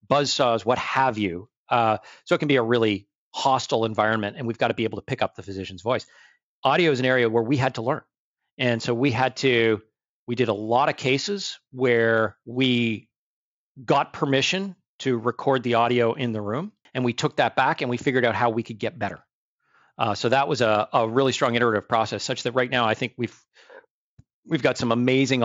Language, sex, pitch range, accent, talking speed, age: English, male, 110-130 Hz, American, 215 wpm, 40-59